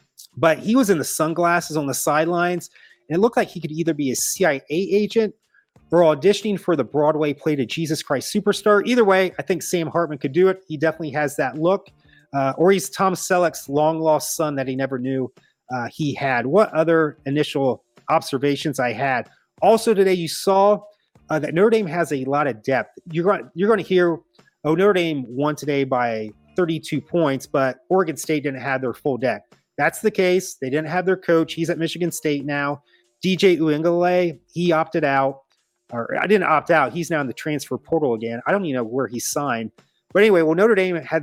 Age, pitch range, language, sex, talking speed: 30-49, 140-180 Hz, English, male, 205 wpm